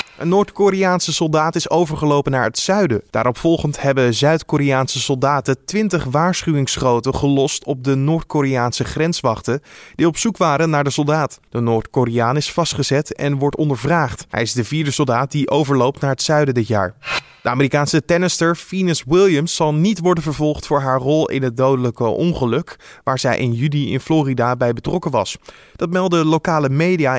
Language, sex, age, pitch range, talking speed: Dutch, male, 20-39, 130-165 Hz, 165 wpm